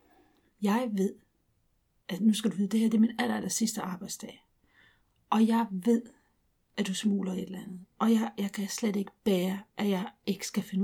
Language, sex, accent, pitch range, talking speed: Danish, female, native, 200-230 Hz, 205 wpm